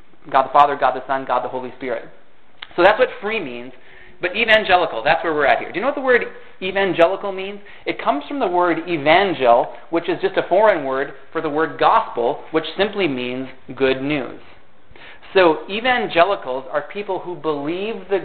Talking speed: 190 wpm